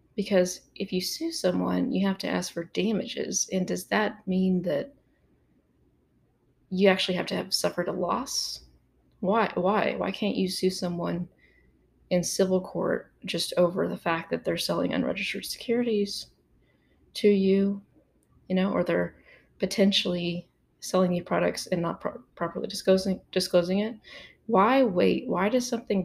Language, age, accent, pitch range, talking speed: English, 20-39, American, 170-190 Hz, 145 wpm